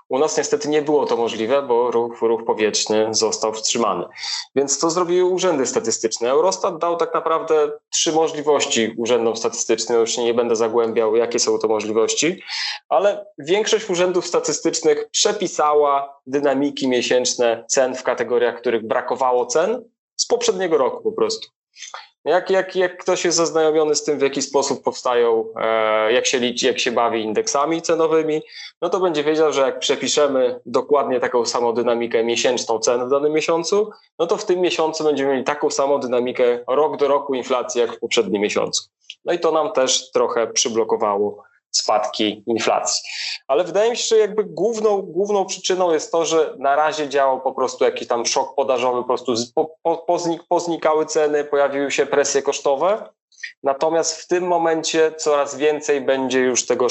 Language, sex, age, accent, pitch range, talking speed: Polish, male, 20-39, native, 130-180 Hz, 160 wpm